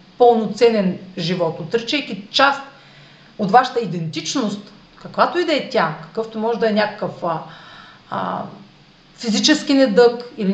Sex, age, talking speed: female, 40-59, 125 wpm